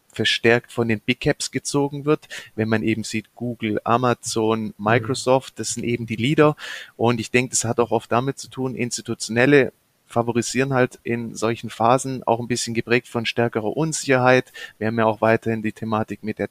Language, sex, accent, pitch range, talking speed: German, male, German, 110-130 Hz, 185 wpm